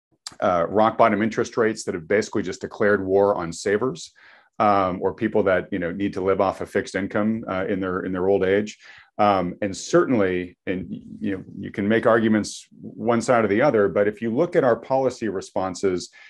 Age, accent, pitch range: 40-59, American, 95-115 Hz